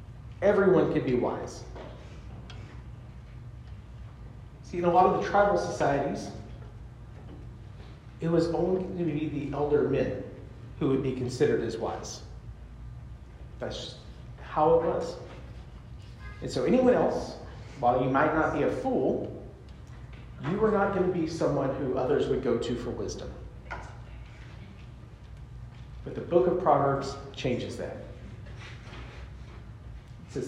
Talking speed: 130 wpm